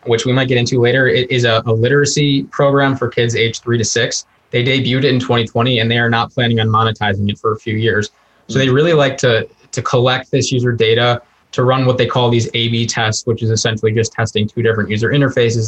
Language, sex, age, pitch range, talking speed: English, male, 20-39, 115-130 Hz, 235 wpm